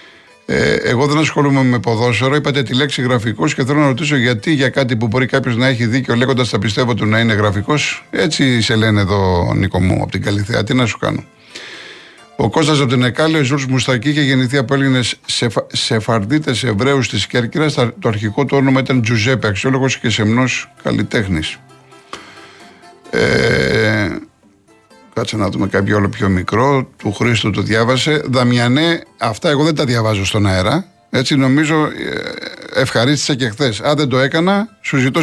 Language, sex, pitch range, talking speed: Greek, male, 115-150 Hz, 175 wpm